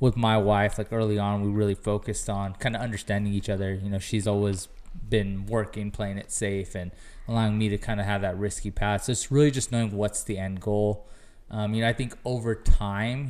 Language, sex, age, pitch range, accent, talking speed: English, male, 20-39, 100-115 Hz, American, 225 wpm